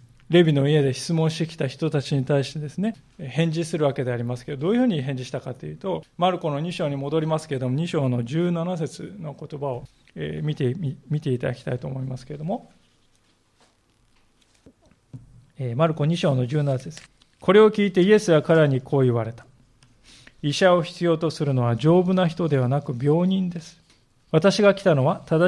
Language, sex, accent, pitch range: Japanese, male, native, 130-185 Hz